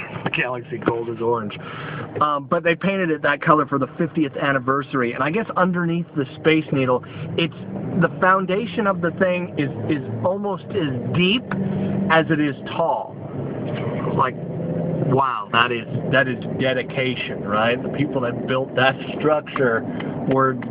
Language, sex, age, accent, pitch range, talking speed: English, male, 50-69, American, 130-170 Hz, 150 wpm